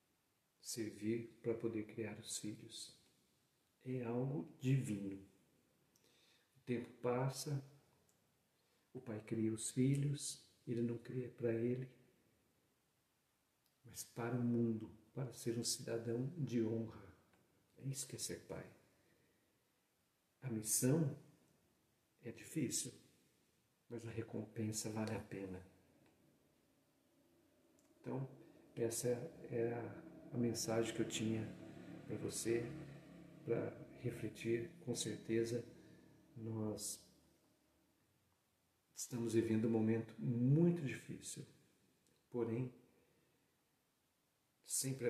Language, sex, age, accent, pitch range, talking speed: Portuguese, male, 60-79, Brazilian, 110-130 Hz, 95 wpm